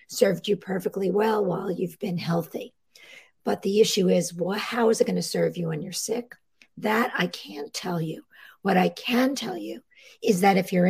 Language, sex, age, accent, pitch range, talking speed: English, female, 50-69, American, 175-220 Hz, 205 wpm